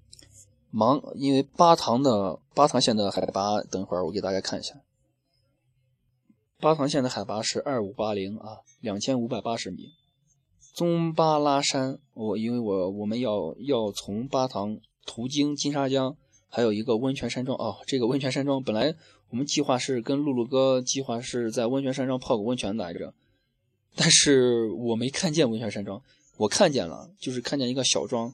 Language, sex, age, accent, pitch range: Chinese, male, 20-39, native, 110-145 Hz